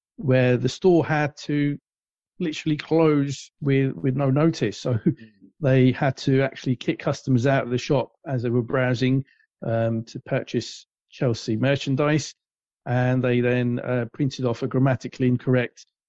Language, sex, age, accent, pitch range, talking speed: English, male, 50-69, British, 120-140 Hz, 150 wpm